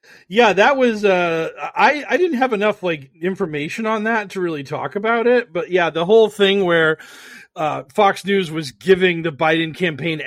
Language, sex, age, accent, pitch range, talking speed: English, male, 40-59, American, 160-245 Hz, 185 wpm